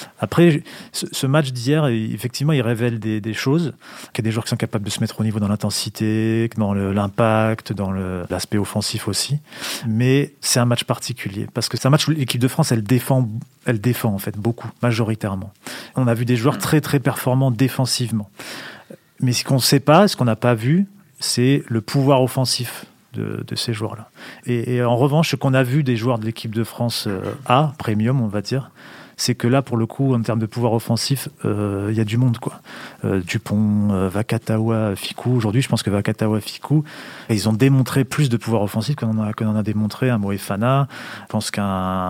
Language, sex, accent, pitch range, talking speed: French, male, French, 105-130 Hz, 210 wpm